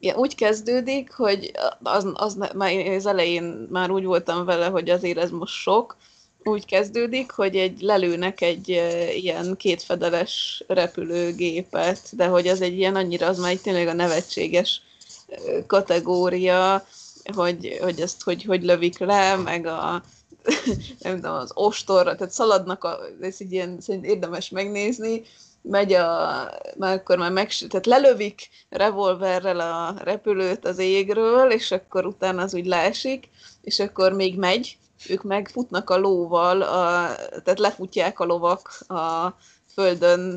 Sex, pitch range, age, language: female, 175-200 Hz, 20-39, Hungarian